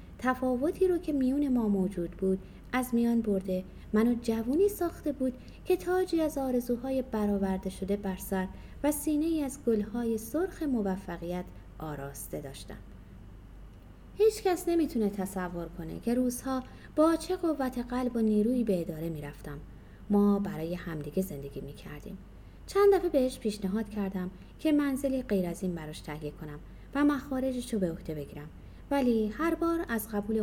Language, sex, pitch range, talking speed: Persian, female, 190-280 Hz, 145 wpm